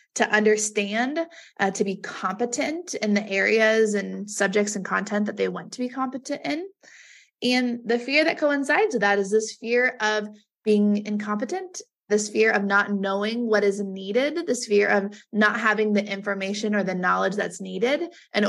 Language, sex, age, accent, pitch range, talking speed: English, female, 20-39, American, 200-235 Hz, 175 wpm